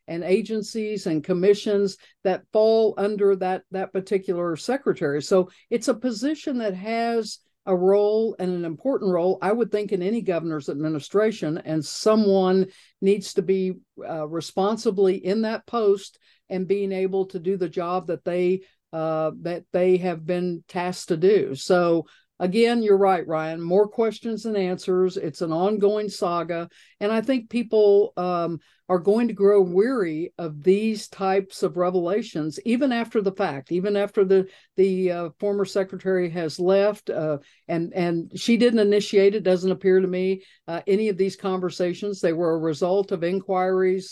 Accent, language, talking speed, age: American, English, 165 wpm, 60-79